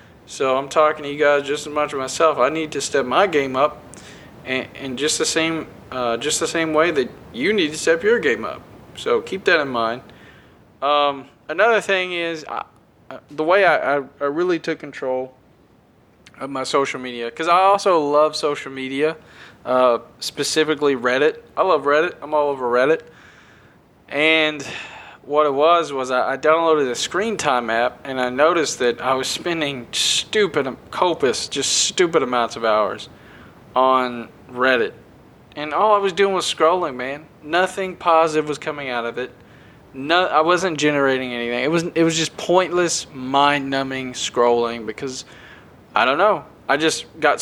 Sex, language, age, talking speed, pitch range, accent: male, English, 20-39, 170 wpm, 130-160 Hz, American